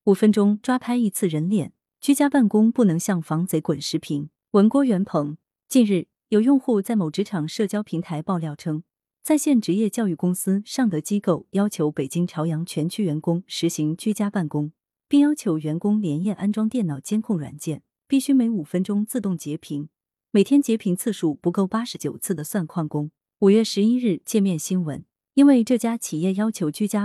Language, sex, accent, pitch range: Chinese, female, native, 160-220 Hz